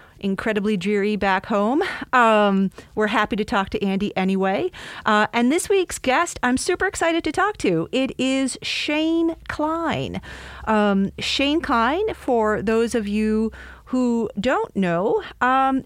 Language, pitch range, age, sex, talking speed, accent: English, 205-275 Hz, 40-59, female, 145 wpm, American